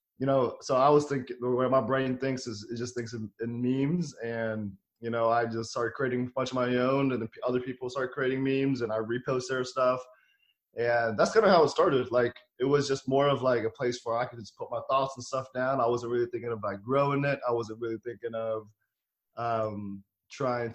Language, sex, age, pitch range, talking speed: English, male, 20-39, 115-130 Hz, 235 wpm